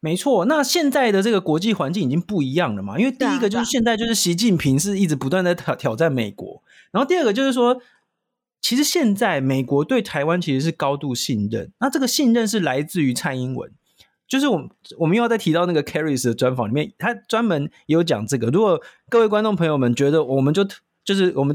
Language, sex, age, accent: Chinese, male, 20-39, native